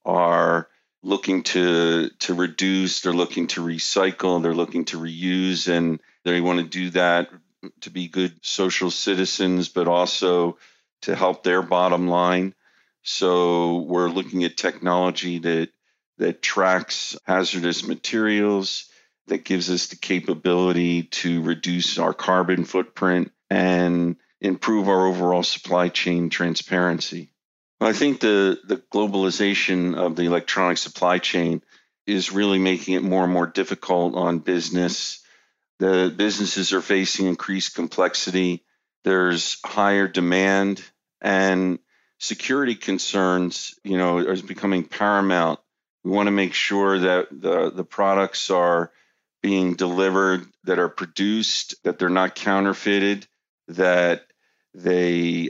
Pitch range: 90-95 Hz